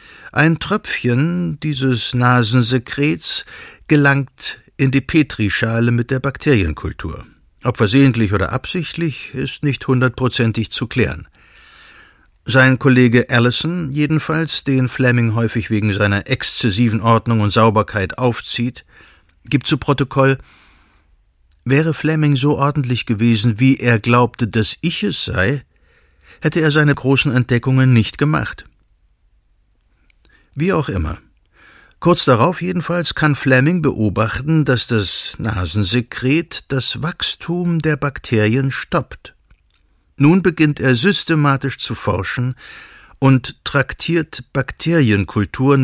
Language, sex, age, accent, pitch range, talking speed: German, male, 60-79, German, 115-145 Hz, 105 wpm